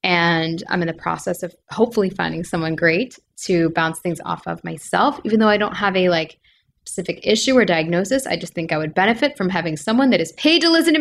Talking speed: 230 wpm